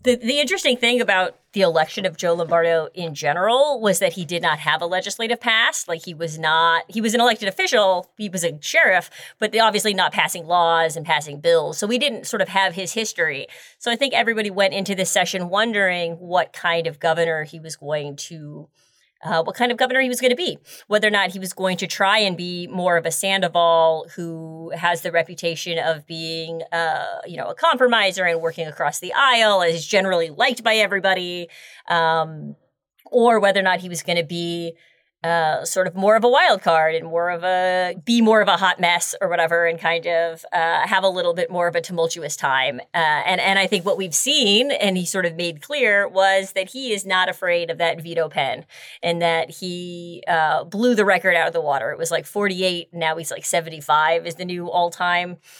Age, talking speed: 30-49, 220 wpm